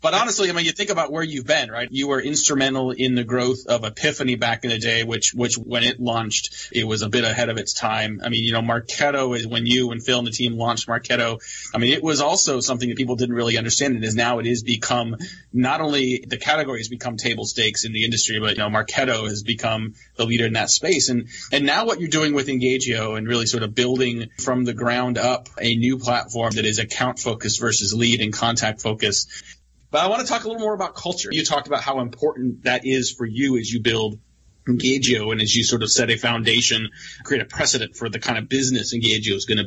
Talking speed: 245 wpm